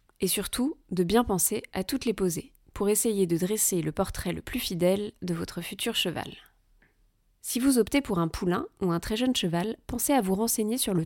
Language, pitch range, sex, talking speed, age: French, 180-220 Hz, female, 210 wpm, 30-49